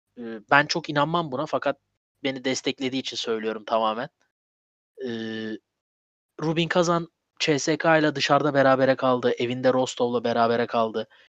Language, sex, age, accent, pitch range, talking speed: Turkish, male, 30-49, native, 115-155 Hz, 115 wpm